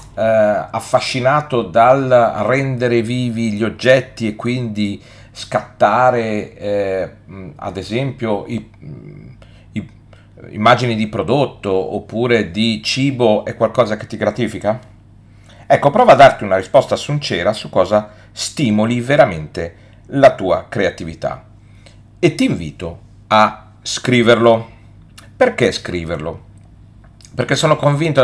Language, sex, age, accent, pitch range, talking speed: Italian, male, 40-59, native, 100-115 Hz, 105 wpm